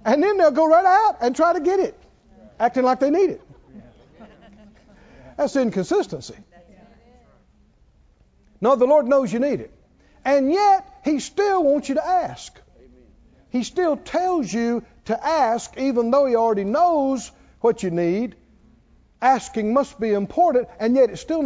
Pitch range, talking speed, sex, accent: 195-290 Hz, 155 wpm, male, American